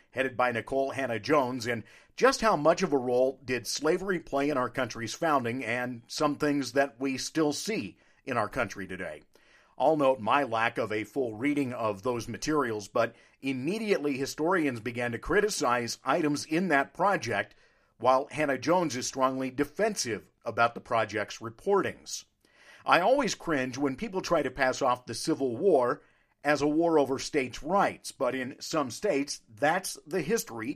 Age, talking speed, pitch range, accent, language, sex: 50-69, 165 wpm, 125-160 Hz, American, English, male